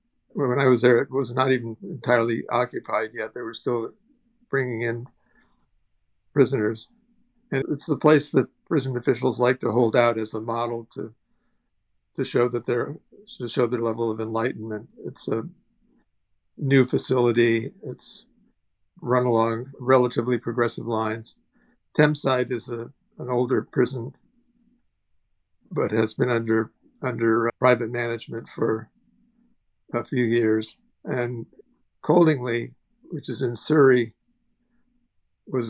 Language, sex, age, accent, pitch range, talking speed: English, male, 50-69, American, 115-140 Hz, 130 wpm